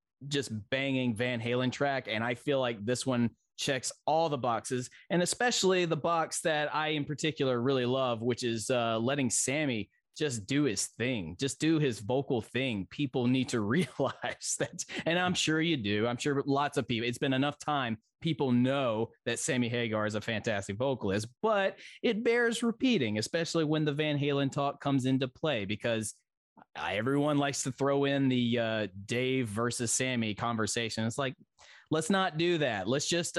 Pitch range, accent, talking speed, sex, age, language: 120-150 Hz, American, 180 wpm, male, 20-39, English